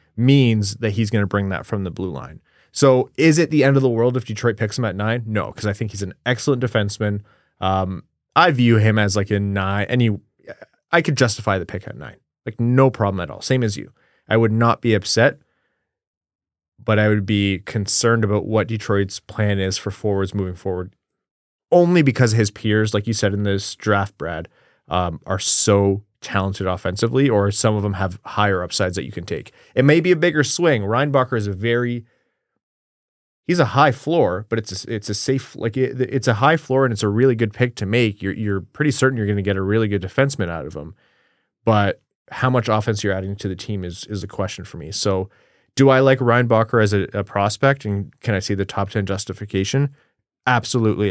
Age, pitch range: 20-39, 100-125 Hz